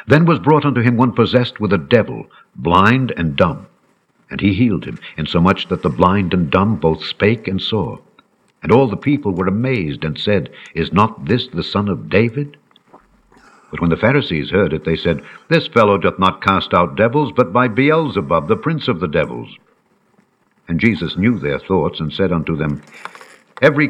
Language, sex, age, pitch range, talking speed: English, male, 60-79, 90-120 Hz, 190 wpm